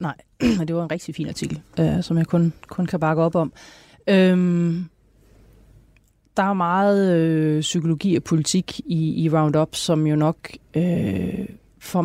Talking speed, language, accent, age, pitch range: 140 wpm, Danish, native, 30-49, 150-175 Hz